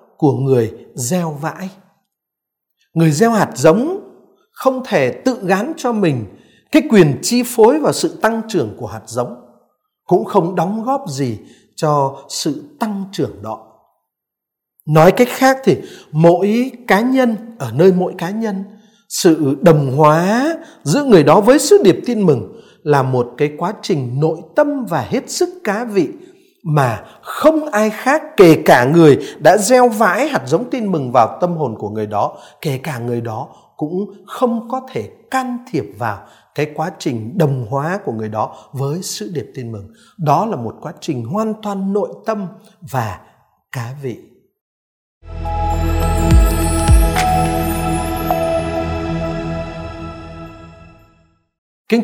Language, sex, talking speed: Vietnamese, male, 145 wpm